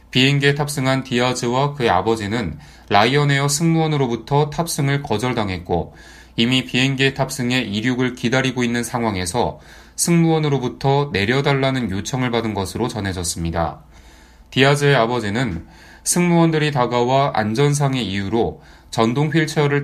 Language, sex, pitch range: Korean, male, 105-140 Hz